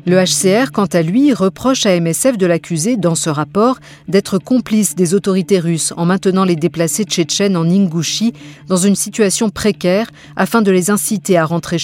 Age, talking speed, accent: 50-69, 180 wpm, French